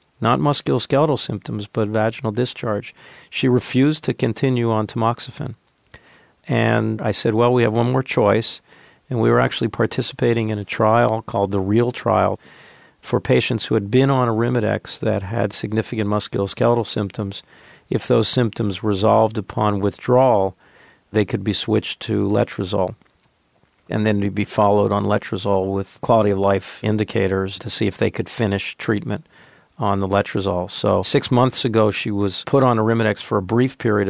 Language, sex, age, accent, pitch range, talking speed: English, male, 50-69, American, 105-120 Hz, 160 wpm